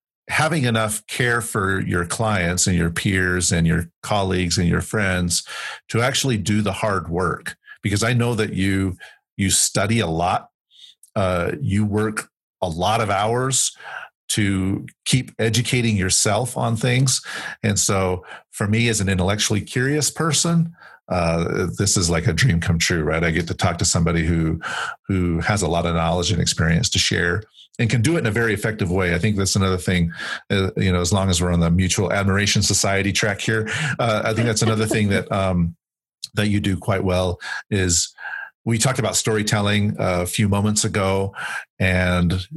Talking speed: 180 wpm